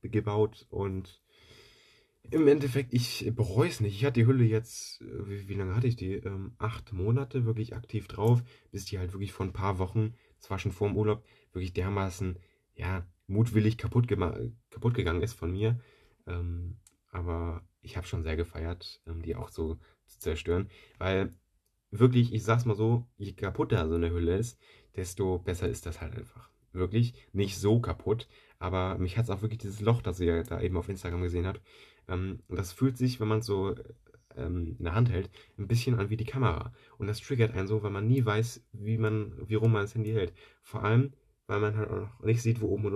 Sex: male